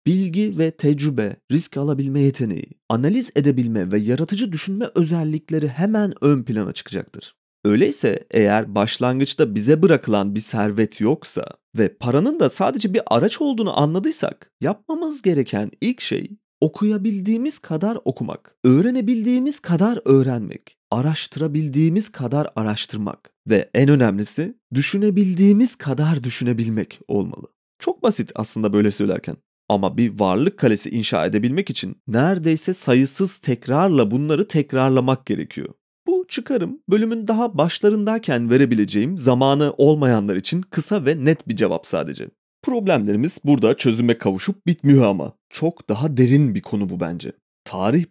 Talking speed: 125 wpm